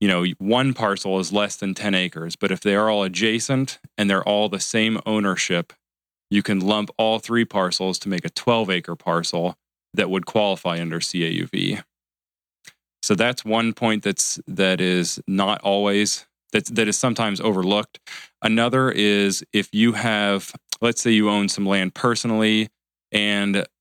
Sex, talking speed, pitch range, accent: male, 165 wpm, 90-105 Hz, American